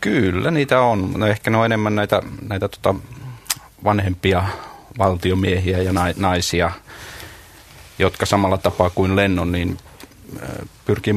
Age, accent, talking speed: 30-49, native, 120 wpm